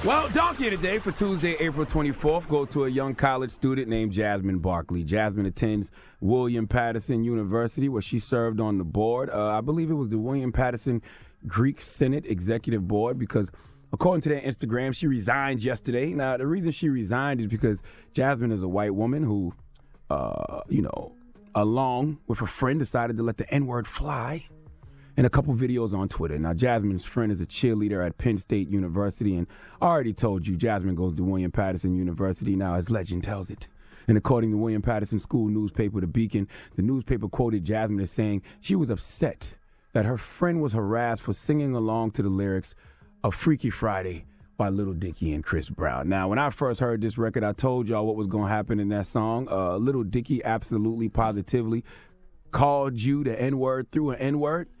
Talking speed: 190 wpm